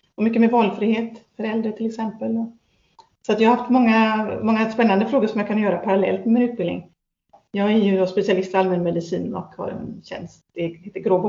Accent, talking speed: native, 195 wpm